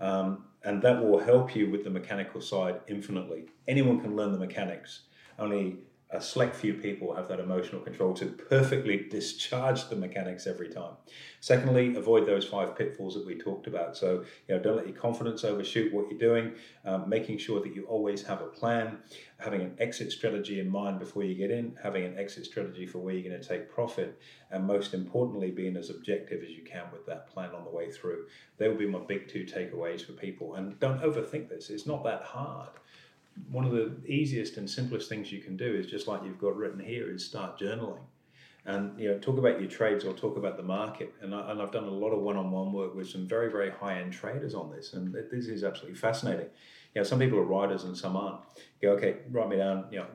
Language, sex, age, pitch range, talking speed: English, male, 40-59, 95-115 Hz, 225 wpm